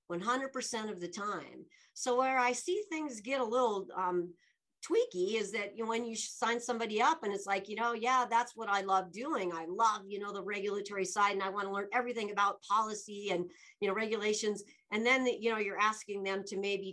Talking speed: 230 wpm